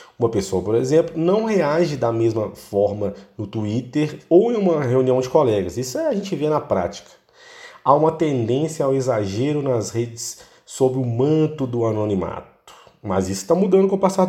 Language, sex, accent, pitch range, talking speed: Portuguese, male, Brazilian, 105-150 Hz, 175 wpm